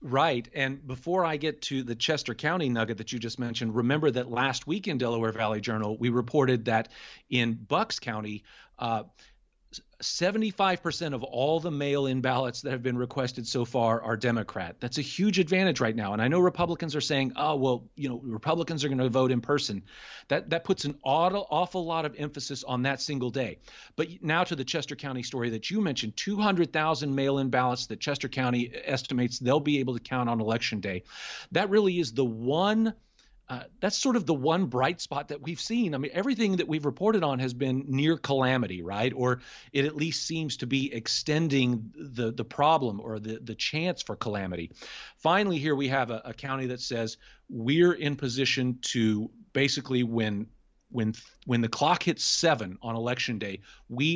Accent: American